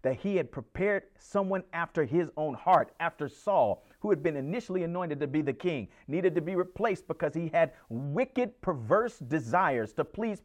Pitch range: 145-230 Hz